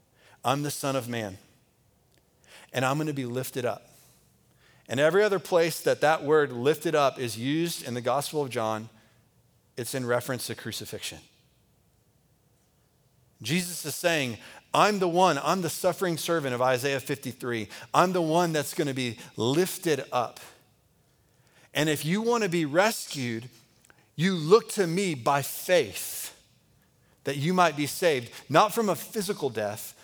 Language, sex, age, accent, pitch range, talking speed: English, male, 40-59, American, 125-175 Hz, 155 wpm